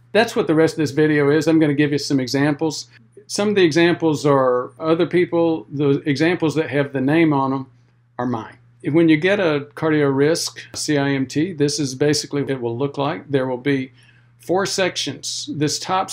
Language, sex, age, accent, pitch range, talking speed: English, male, 50-69, American, 125-155 Hz, 200 wpm